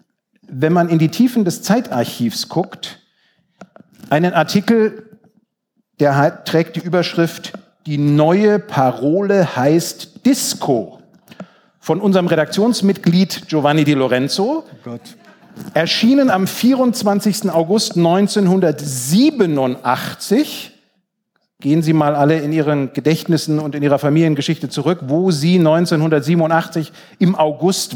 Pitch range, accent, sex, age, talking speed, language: 150-210 Hz, German, male, 50-69, 100 wpm, German